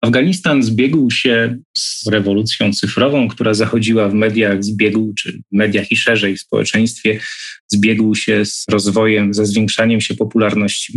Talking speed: 140 wpm